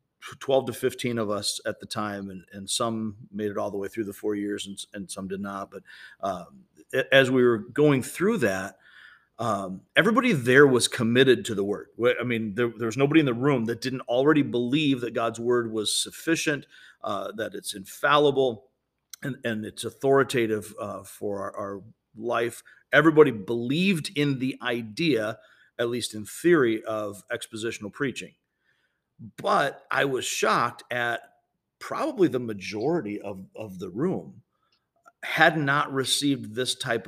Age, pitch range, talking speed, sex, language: 40-59, 105-135 Hz, 165 wpm, male, English